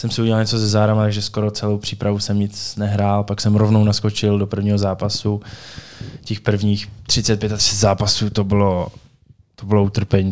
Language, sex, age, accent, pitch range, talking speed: Czech, male, 20-39, native, 100-110 Hz, 170 wpm